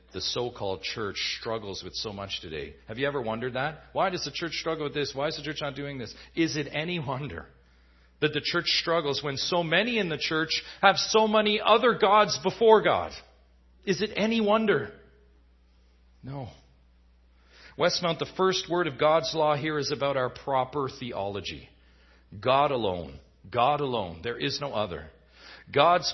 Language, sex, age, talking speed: English, male, 40-59, 170 wpm